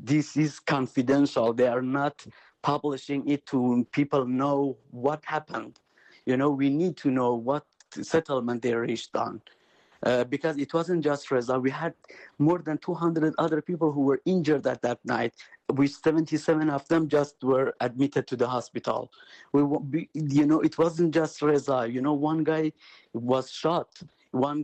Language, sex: English, male